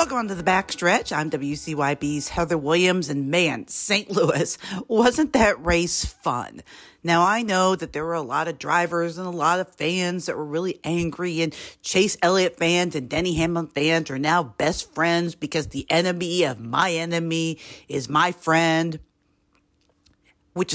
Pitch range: 155-190 Hz